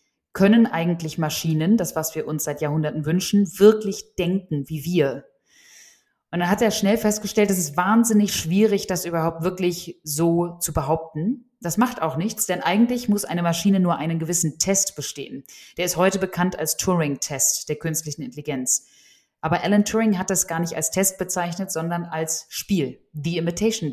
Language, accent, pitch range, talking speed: German, German, 160-200 Hz, 170 wpm